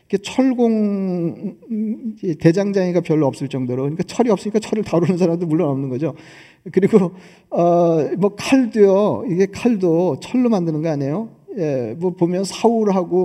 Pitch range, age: 165-200 Hz, 40-59